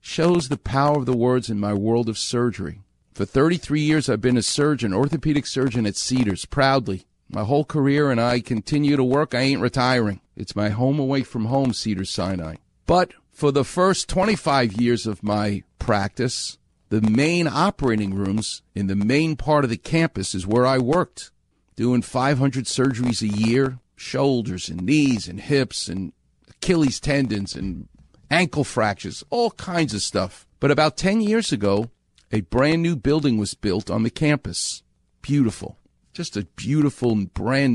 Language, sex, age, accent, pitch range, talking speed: English, male, 50-69, American, 105-145 Hz, 165 wpm